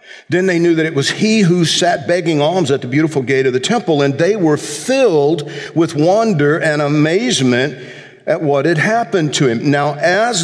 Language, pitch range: English, 130-175 Hz